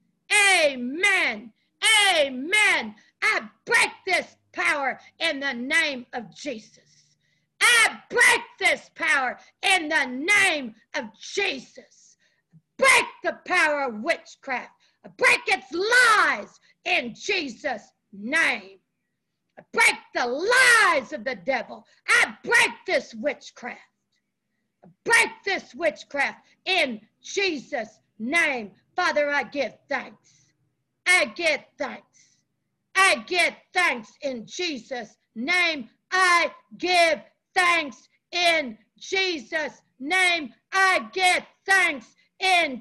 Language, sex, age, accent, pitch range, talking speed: English, female, 60-79, American, 260-385 Hz, 100 wpm